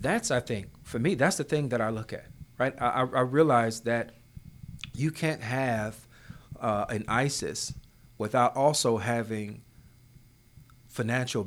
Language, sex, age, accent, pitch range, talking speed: English, male, 40-59, American, 110-130 Hz, 140 wpm